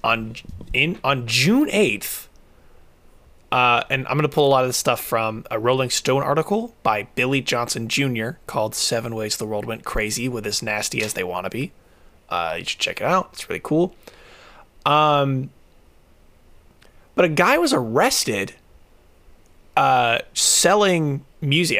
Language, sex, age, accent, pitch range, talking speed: English, male, 20-39, American, 110-155 Hz, 155 wpm